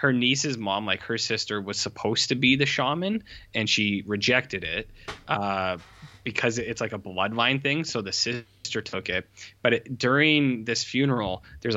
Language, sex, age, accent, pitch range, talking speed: English, male, 10-29, American, 100-130 Hz, 170 wpm